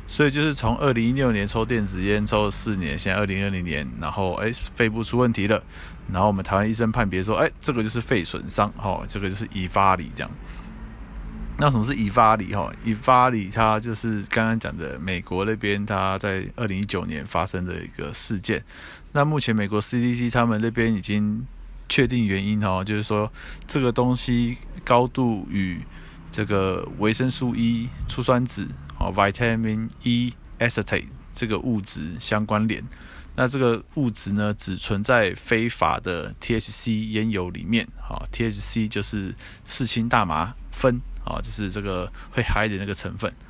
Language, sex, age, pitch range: Chinese, male, 20-39, 100-120 Hz